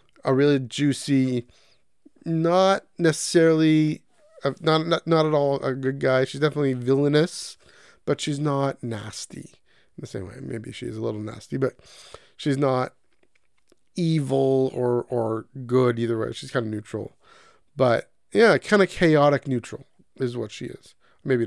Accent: American